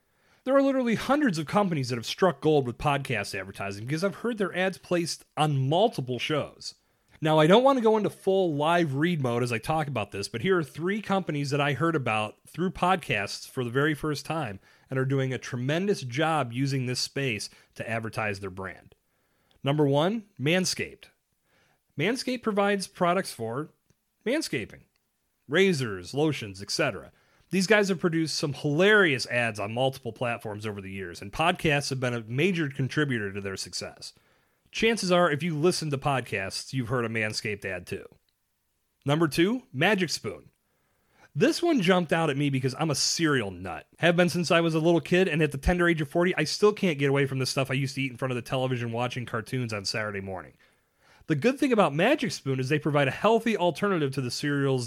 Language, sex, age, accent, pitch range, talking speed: English, male, 30-49, American, 125-180 Hz, 200 wpm